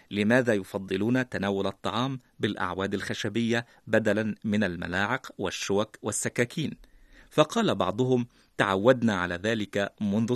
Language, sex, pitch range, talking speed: Arabic, male, 95-120 Hz, 100 wpm